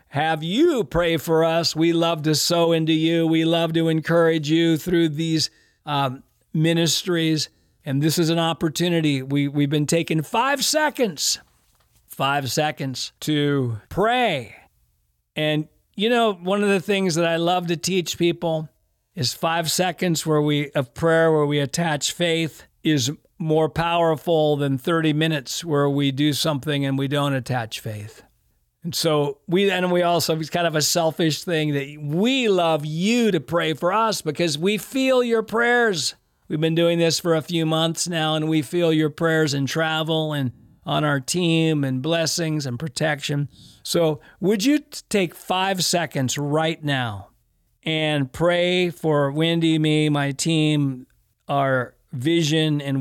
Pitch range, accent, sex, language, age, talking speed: 145-170 Hz, American, male, English, 50-69, 160 wpm